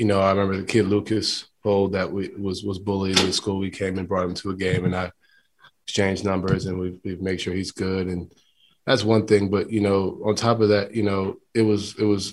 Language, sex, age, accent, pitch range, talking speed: English, male, 20-39, American, 95-105 Hz, 250 wpm